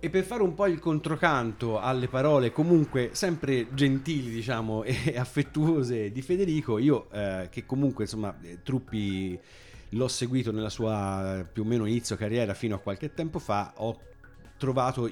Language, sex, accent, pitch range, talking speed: Italian, male, native, 100-130 Hz, 160 wpm